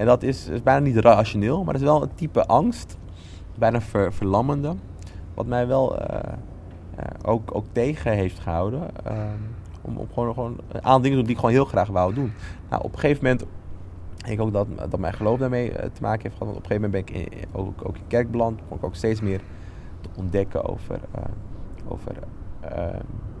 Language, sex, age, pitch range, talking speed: Dutch, male, 20-39, 95-120 Hz, 220 wpm